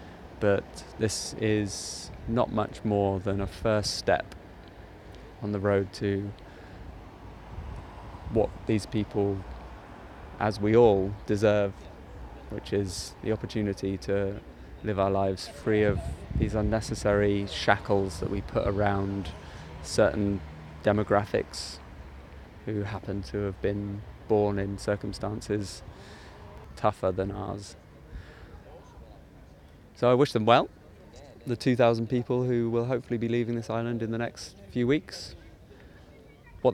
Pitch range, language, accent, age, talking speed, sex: 95-110 Hz, English, British, 20-39, 120 wpm, male